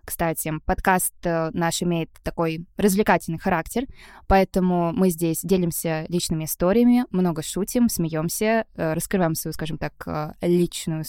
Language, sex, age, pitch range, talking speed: Russian, female, 20-39, 165-205 Hz, 115 wpm